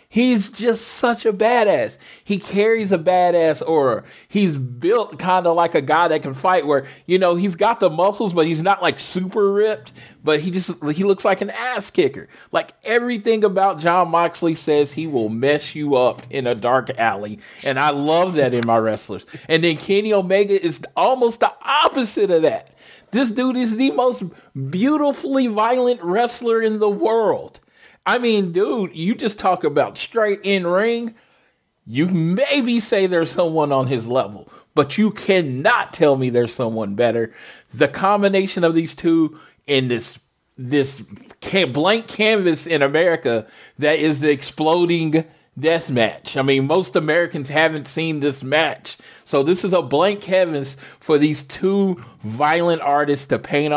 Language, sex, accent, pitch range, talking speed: English, male, American, 145-205 Hz, 165 wpm